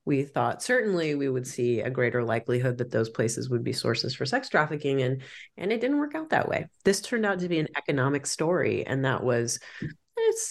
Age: 30-49